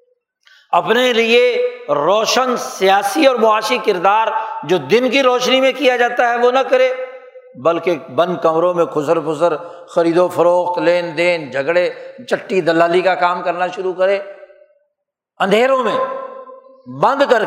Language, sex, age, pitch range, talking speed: Urdu, male, 60-79, 165-240 Hz, 140 wpm